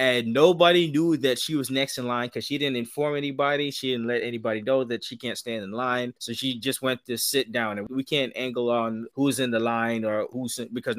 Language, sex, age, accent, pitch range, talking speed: English, male, 20-39, American, 120-165 Hz, 240 wpm